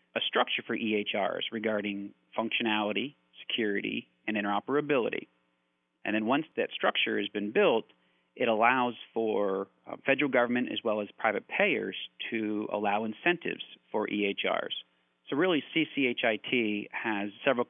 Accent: American